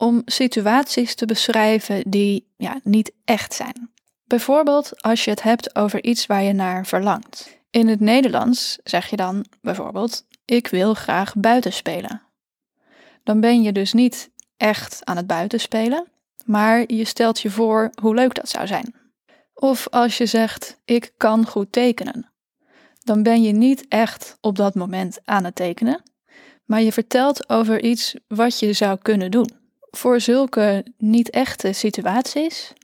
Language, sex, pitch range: Dutch, female, 205-245 Hz